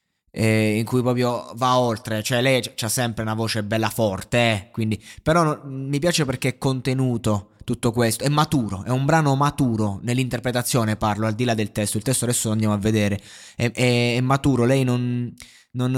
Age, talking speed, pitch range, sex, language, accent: 20-39, 200 wpm, 105-125 Hz, male, Italian, native